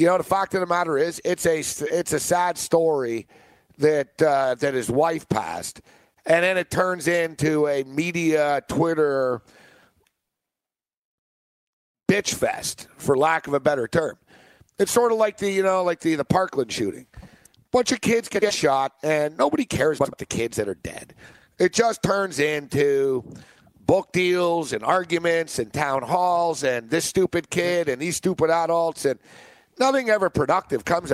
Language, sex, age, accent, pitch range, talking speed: English, male, 50-69, American, 145-180 Hz, 160 wpm